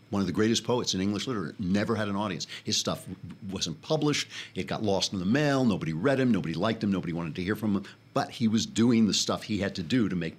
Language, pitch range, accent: English, 90-115 Hz, American